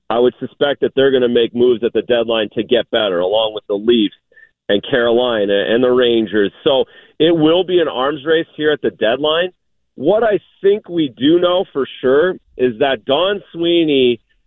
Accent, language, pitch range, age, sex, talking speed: American, English, 120-170 Hz, 40-59, male, 195 wpm